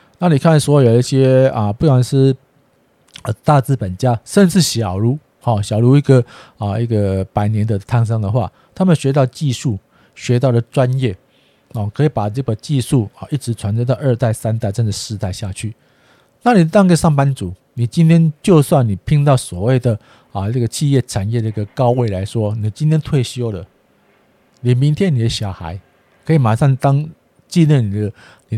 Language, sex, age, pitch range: Chinese, male, 50-69, 110-140 Hz